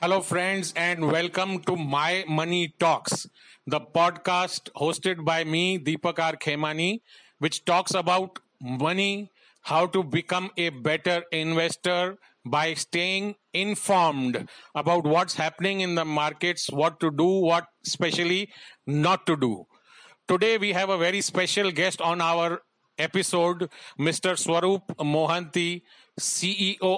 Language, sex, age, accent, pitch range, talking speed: English, male, 40-59, Indian, 160-185 Hz, 125 wpm